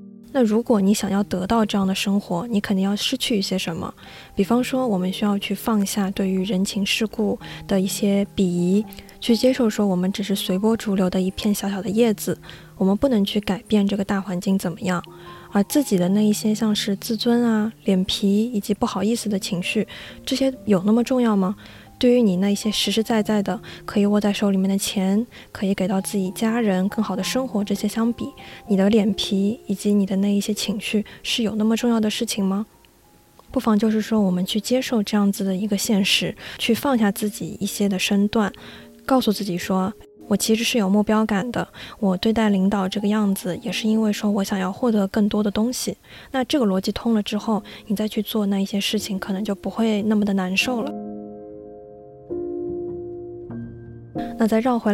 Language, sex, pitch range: Chinese, female, 195-225 Hz